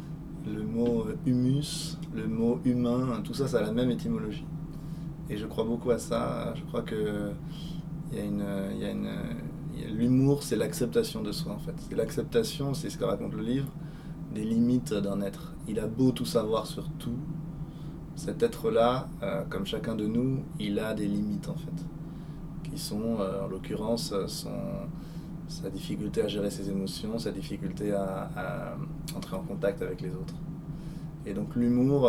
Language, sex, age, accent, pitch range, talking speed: French, male, 20-39, French, 120-165 Hz, 155 wpm